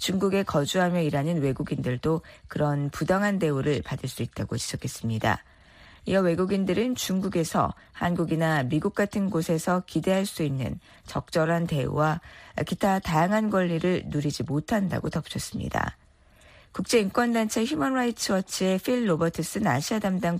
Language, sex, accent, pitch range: Korean, female, native, 150-210 Hz